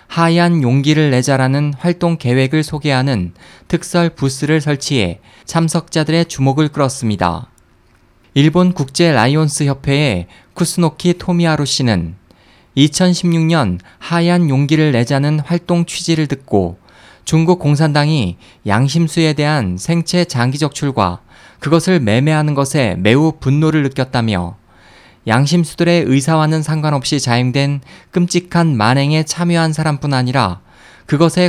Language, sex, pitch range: Korean, male, 120-160 Hz